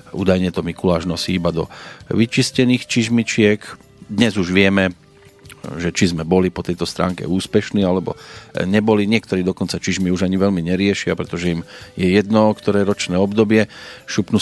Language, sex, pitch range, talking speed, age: Slovak, male, 90-110 Hz, 150 wpm, 40-59